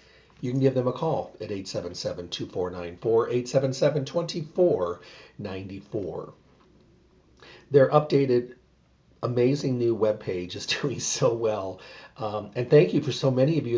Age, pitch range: 40-59, 110-140 Hz